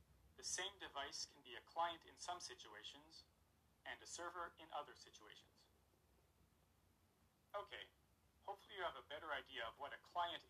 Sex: male